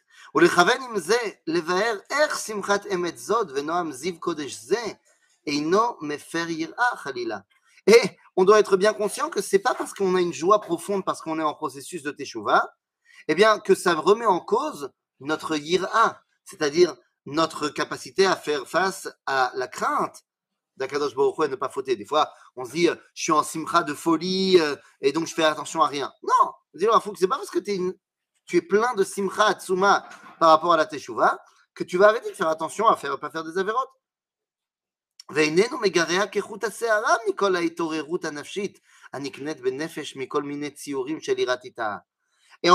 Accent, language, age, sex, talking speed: French, French, 30-49, male, 140 wpm